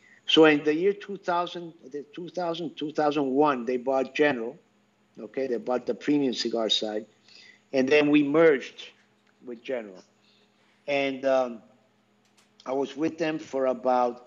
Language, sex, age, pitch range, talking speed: English, male, 50-69, 115-145 Hz, 130 wpm